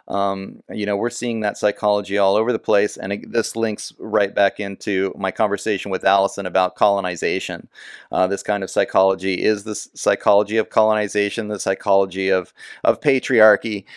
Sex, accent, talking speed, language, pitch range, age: male, American, 160 wpm, English, 100-120 Hz, 30-49